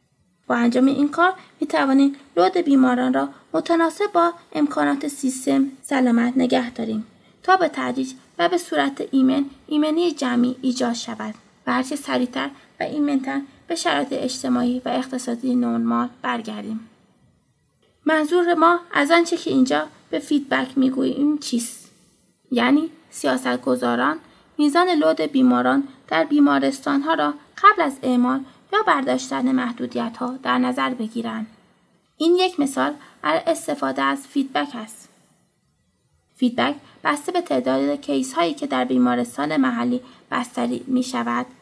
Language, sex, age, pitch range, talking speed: Persian, female, 20-39, 220-295 Hz, 130 wpm